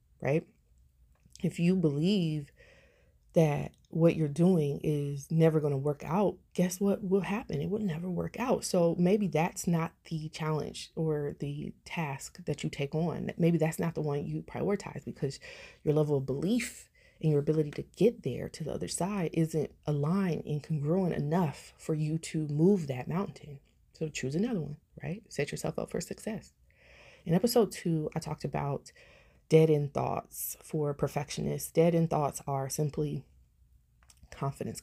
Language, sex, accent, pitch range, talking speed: English, female, American, 140-170 Hz, 160 wpm